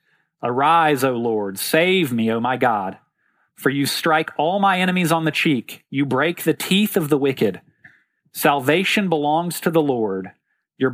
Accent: American